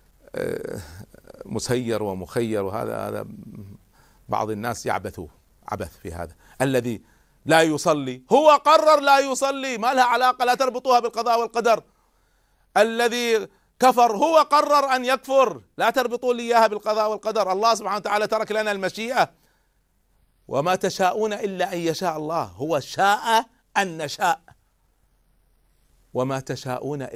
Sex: male